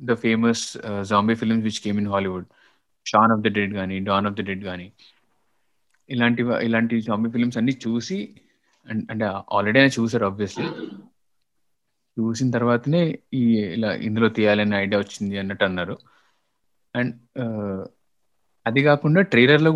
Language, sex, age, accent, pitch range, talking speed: Telugu, male, 20-39, native, 105-125 Hz, 135 wpm